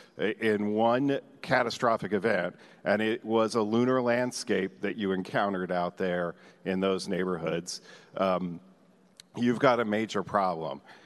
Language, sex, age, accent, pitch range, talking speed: English, male, 50-69, American, 105-125 Hz, 130 wpm